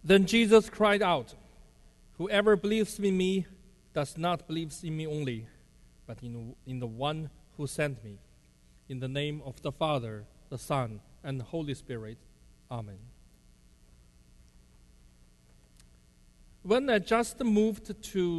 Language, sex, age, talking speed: English, male, 40-59, 125 wpm